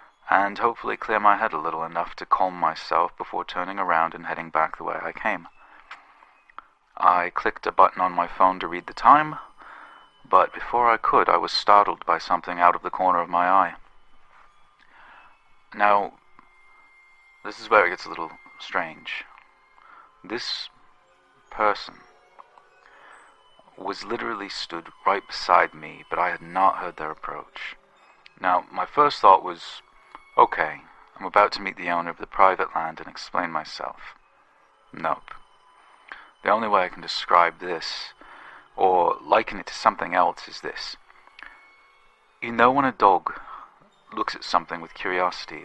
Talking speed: 155 wpm